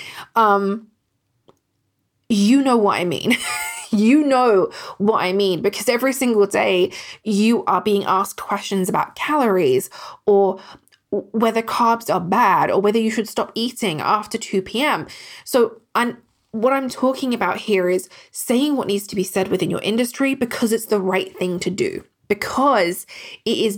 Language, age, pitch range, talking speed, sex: English, 20-39, 190-240 Hz, 155 wpm, female